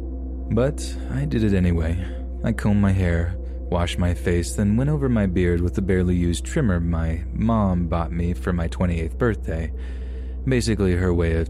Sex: male